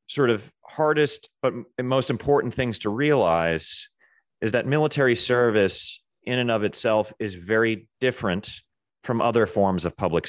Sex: male